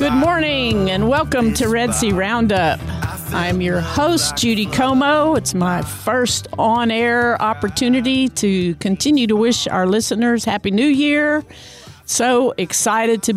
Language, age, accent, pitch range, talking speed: English, 50-69, American, 185-235 Hz, 135 wpm